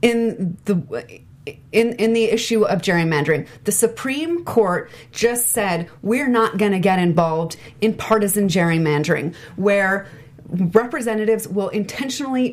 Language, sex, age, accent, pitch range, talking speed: English, female, 30-49, American, 175-225 Hz, 125 wpm